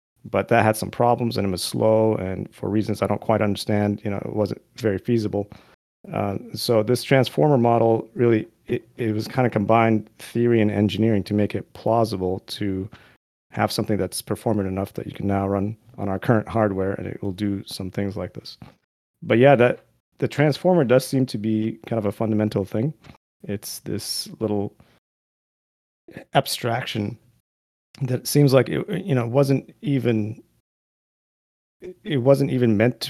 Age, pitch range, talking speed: 30-49, 105-120 Hz, 170 wpm